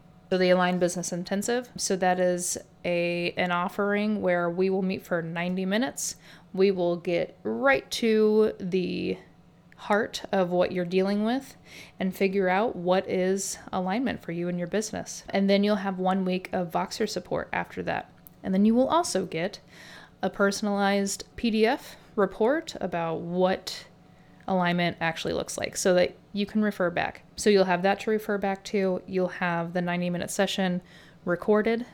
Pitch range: 180-205 Hz